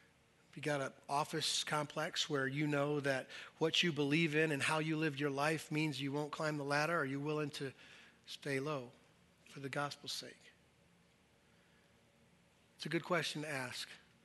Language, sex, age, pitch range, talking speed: English, male, 40-59, 135-155 Hz, 180 wpm